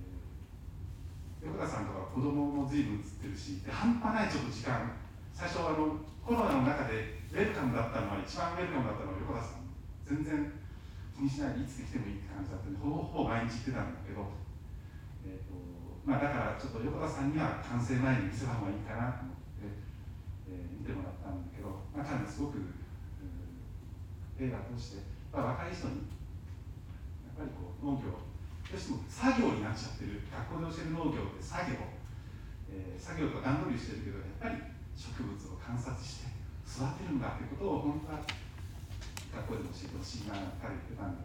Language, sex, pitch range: Japanese, male, 95-125 Hz